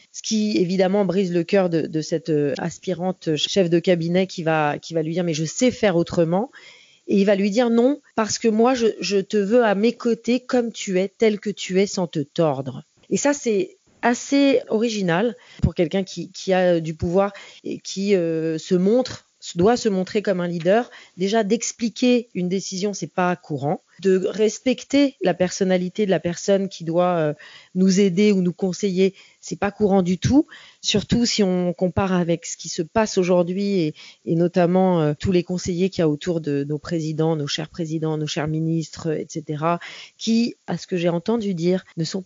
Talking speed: 205 wpm